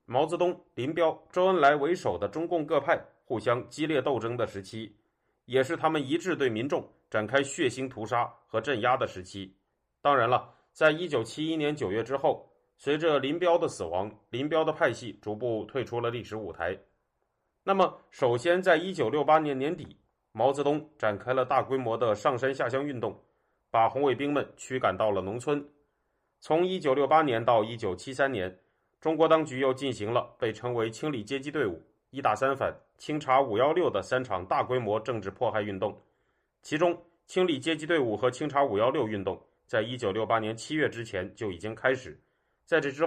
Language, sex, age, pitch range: Chinese, male, 30-49, 115-155 Hz